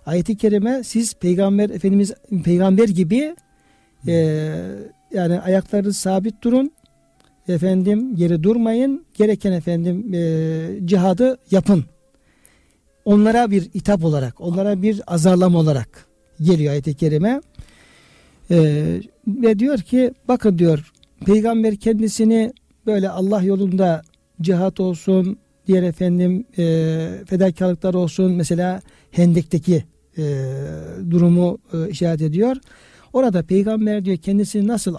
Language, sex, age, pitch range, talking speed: Turkish, male, 60-79, 170-215 Hz, 105 wpm